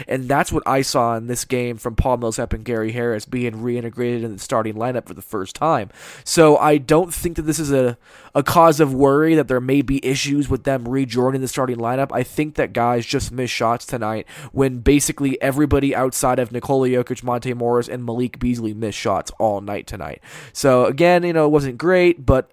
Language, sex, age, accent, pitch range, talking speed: English, male, 20-39, American, 120-140 Hz, 215 wpm